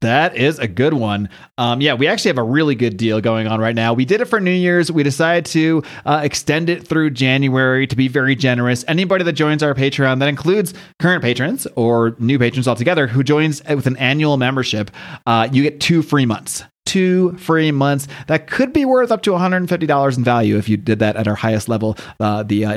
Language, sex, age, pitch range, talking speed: English, male, 30-49, 125-160 Hz, 220 wpm